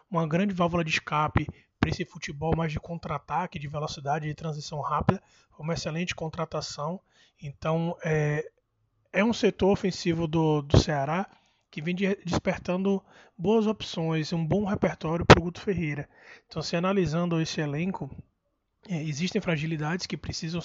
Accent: Brazilian